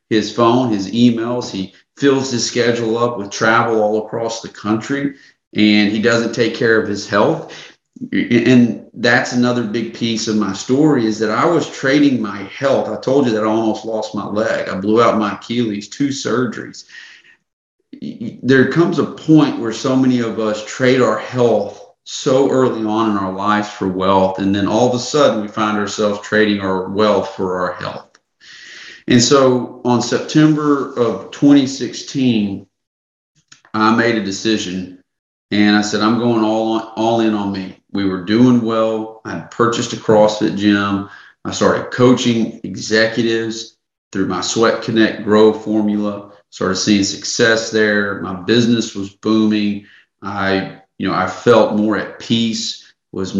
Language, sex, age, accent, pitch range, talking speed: English, male, 40-59, American, 105-120 Hz, 165 wpm